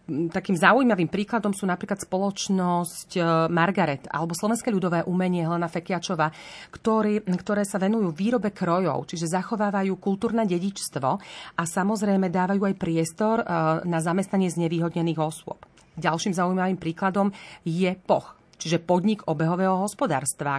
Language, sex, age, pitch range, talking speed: Slovak, female, 40-59, 165-200 Hz, 120 wpm